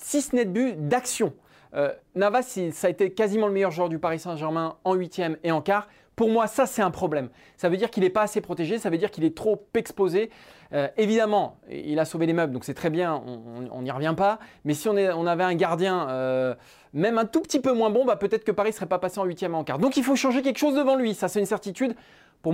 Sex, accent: male, French